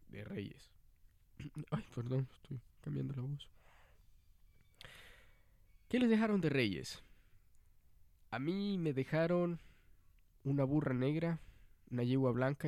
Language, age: Spanish, 20-39